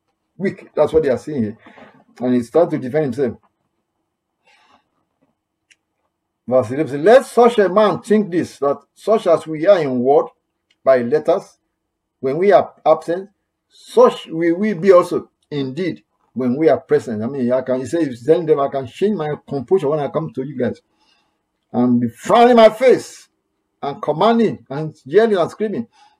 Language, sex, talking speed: English, male, 175 wpm